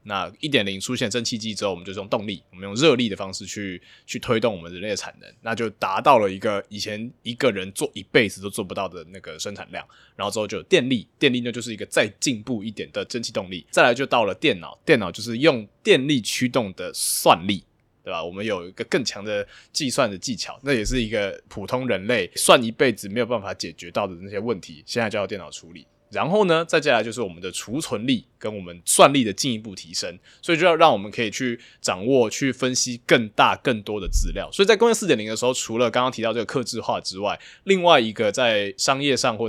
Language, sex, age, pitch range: Chinese, male, 20-39, 105-130 Hz